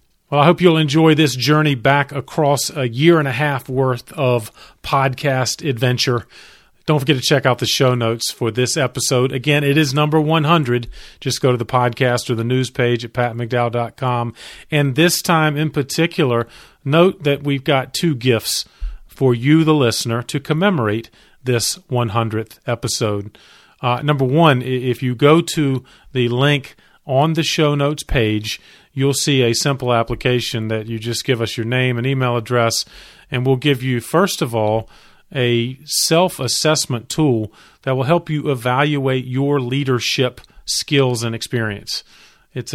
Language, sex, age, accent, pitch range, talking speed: English, male, 40-59, American, 120-145 Hz, 160 wpm